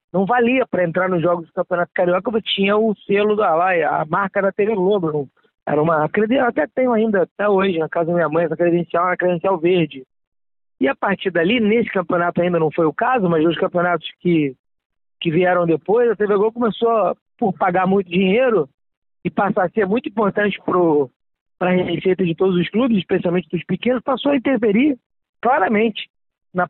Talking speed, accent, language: 190 wpm, Brazilian, Portuguese